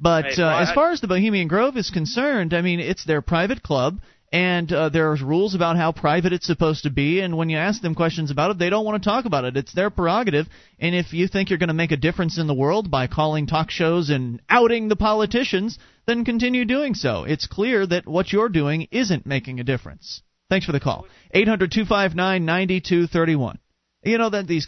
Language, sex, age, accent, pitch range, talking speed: English, male, 40-59, American, 155-215 Hz, 220 wpm